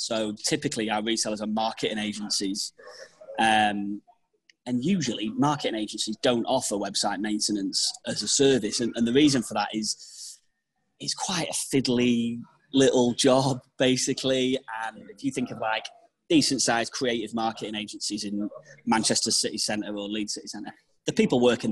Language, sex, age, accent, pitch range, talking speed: English, male, 20-39, British, 110-135 Hz, 150 wpm